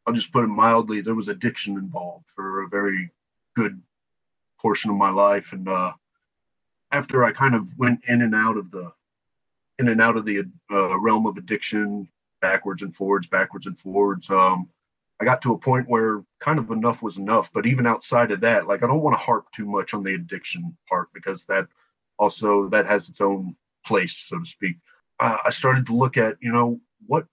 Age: 30-49